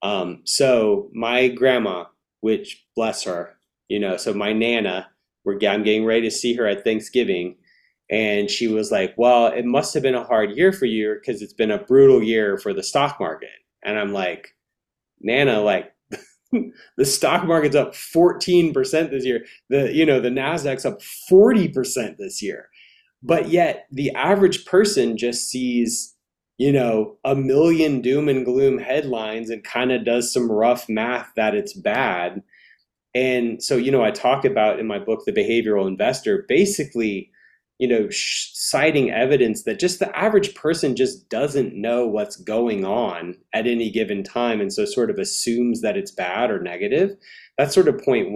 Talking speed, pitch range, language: 170 wpm, 115-185 Hz, English